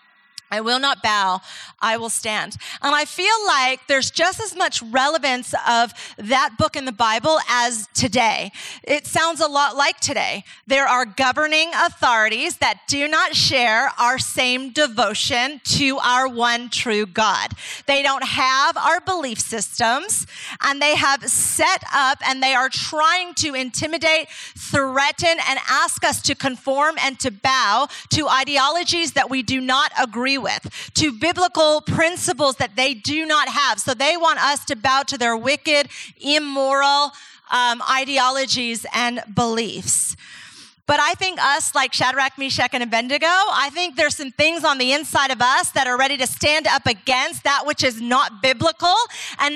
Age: 30-49